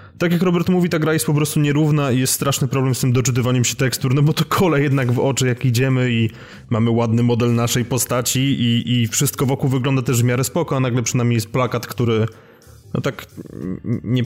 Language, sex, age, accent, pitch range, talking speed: Polish, male, 20-39, native, 115-135 Hz, 220 wpm